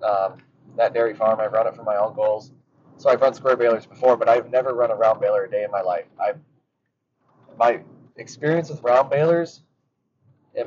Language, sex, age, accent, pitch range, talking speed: English, male, 20-39, American, 120-150 Hz, 195 wpm